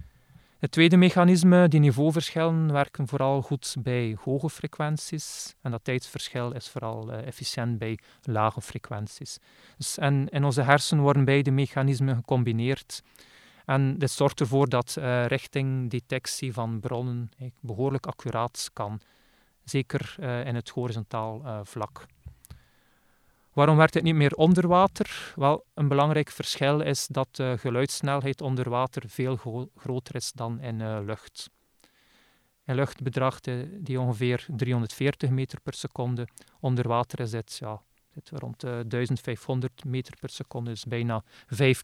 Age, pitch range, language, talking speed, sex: 40-59, 120-140 Hz, Dutch, 130 wpm, male